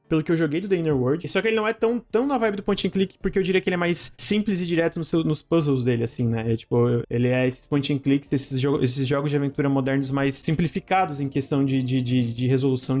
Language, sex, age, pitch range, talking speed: Portuguese, male, 20-39, 135-175 Hz, 285 wpm